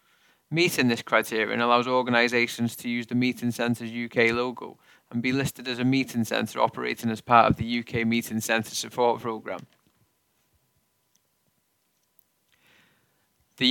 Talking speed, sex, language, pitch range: 130 wpm, male, English, 115-135 Hz